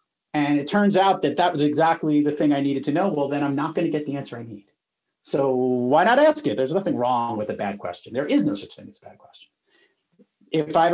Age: 40-59